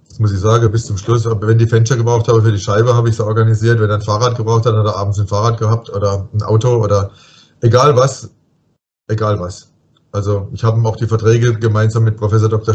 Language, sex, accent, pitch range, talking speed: German, male, German, 105-120 Hz, 230 wpm